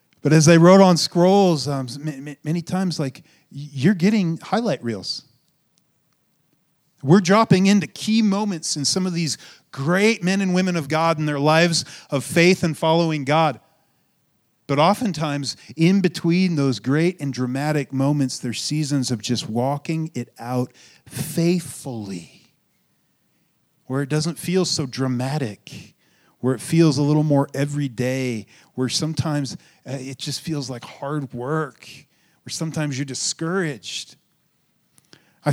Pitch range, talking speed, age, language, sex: 140-180 Hz, 135 wpm, 40-59, English, male